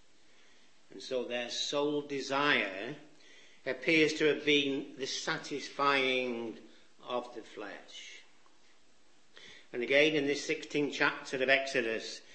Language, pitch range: English, 130-155 Hz